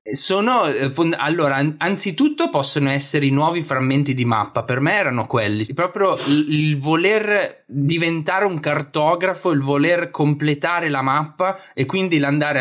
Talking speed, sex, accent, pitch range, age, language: 150 wpm, male, native, 120-150 Hz, 20-39, Italian